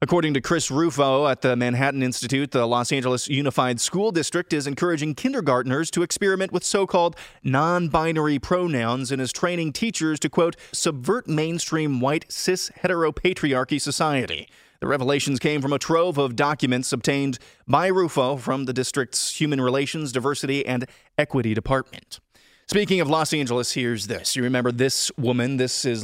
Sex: male